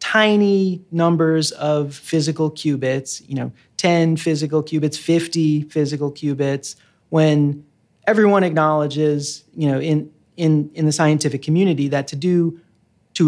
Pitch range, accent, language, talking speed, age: 145-165 Hz, American, English, 125 wpm, 30-49